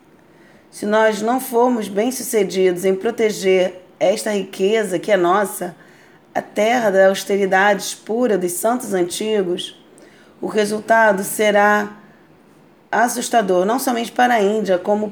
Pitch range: 190-220 Hz